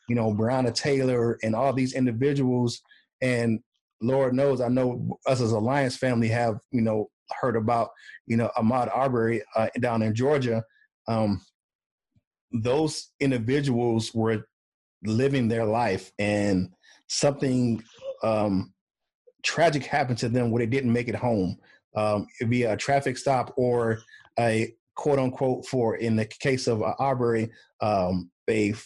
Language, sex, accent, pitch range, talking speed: English, male, American, 110-130 Hz, 140 wpm